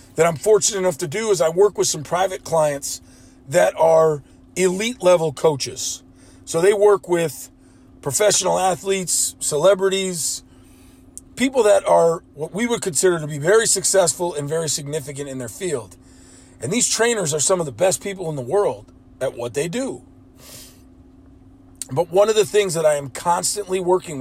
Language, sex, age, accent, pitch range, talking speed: English, male, 40-59, American, 130-200 Hz, 170 wpm